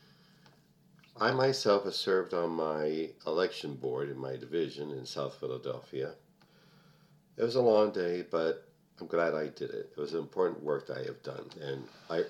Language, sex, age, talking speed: English, male, 50-69, 170 wpm